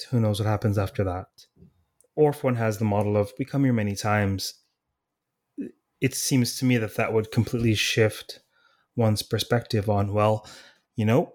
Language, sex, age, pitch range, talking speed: English, male, 30-49, 105-125 Hz, 170 wpm